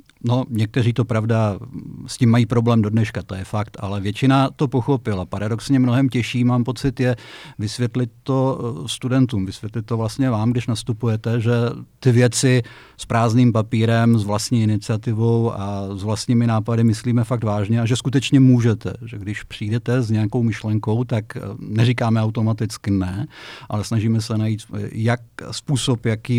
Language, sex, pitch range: Slovak, male, 110-125 Hz